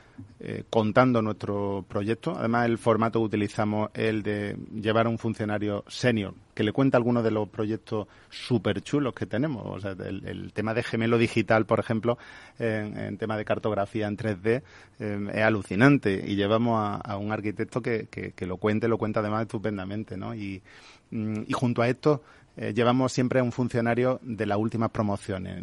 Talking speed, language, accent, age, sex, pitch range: 190 wpm, Spanish, Spanish, 30-49, male, 105-115 Hz